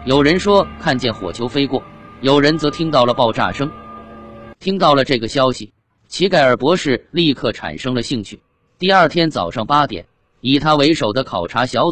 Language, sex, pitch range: Chinese, male, 115-150 Hz